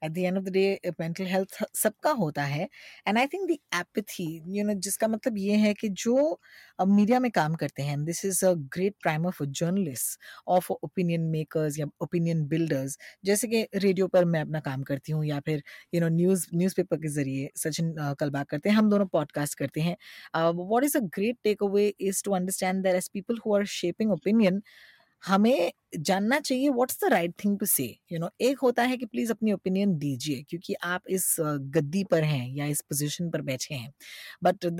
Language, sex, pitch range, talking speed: Hindi, female, 160-210 Hz, 200 wpm